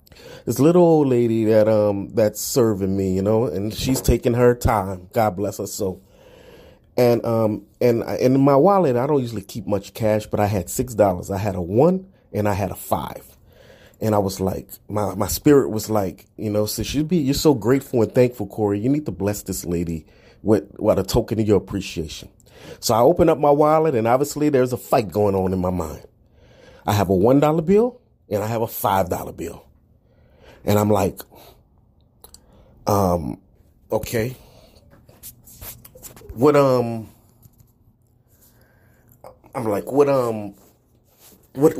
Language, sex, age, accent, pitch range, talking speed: English, male, 30-49, American, 100-130 Hz, 175 wpm